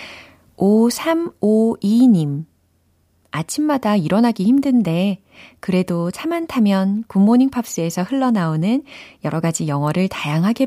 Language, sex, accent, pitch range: Korean, female, native, 155-225 Hz